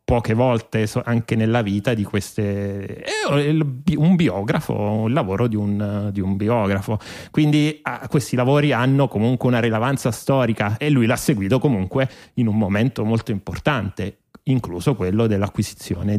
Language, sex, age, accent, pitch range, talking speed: Italian, male, 30-49, native, 110-130 Hz, 145 wpm